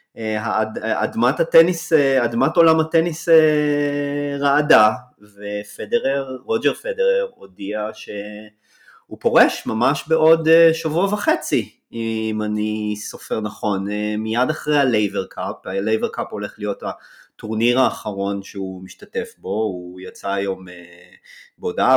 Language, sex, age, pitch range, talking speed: Hebrew, male, 20-39, 100-150 Hz, 100 wpm